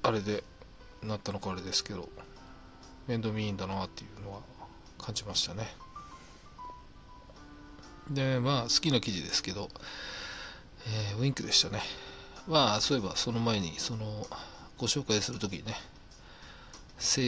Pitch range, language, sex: 95-125 Hz, Japanese, male